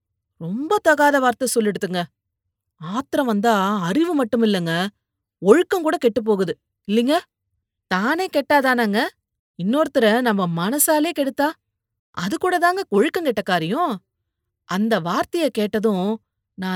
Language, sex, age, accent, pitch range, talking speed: Tamil, female, 30-49, native, 175-235 Hz, 105 wpm